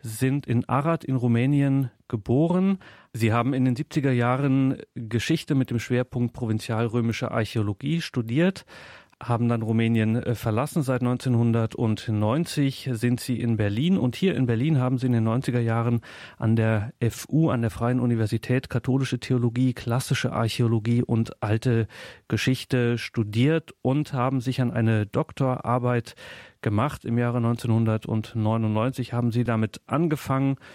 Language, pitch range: German, 115-130 Hz